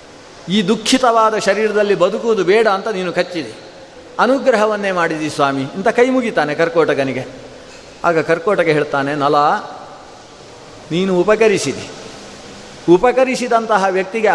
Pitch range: 165-225 Hz